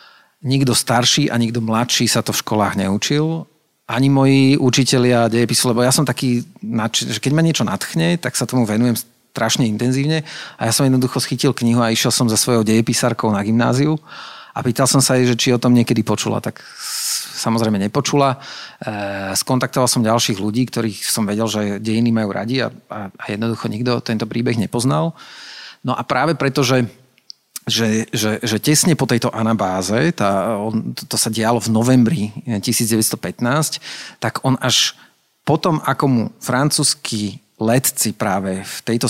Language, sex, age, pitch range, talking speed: Slovak, male, 40-59, 110-135 Hz, 165 wpm